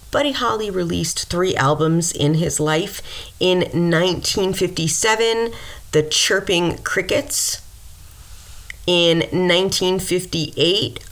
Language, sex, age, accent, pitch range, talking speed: English, female, 30-49, American, 135-170 Hz, 80 wpm